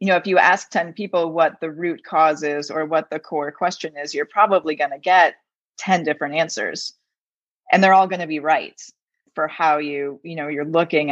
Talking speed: 215 wpm